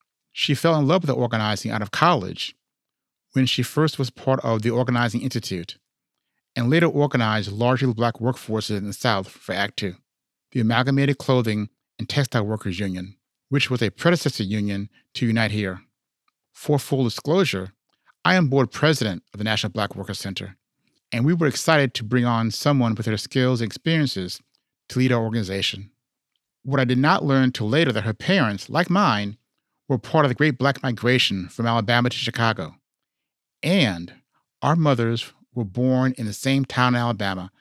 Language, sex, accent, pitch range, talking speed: English, male, American, 105-135 Hz, 175 wpm